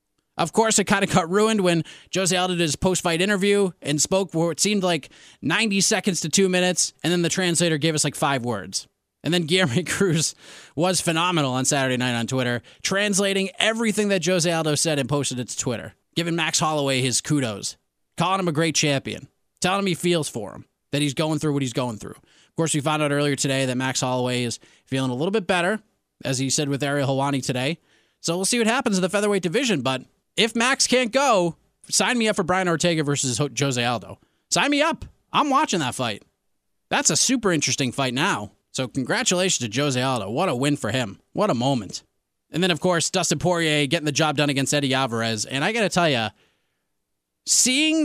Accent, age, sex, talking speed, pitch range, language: American, 20-39, male, 215 wpm, 135-195 Hz, English